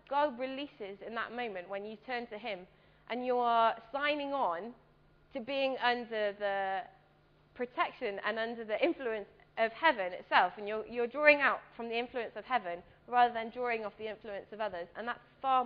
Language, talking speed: English, 185 wpm